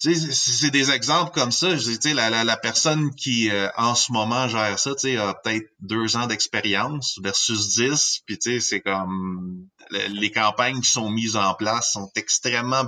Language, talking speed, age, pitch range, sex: French, 170 wpm, 30-49, 110-135 Hz, male